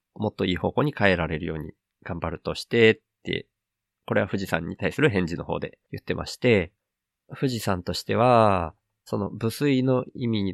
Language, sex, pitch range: Japanese, male, 90-120 Hz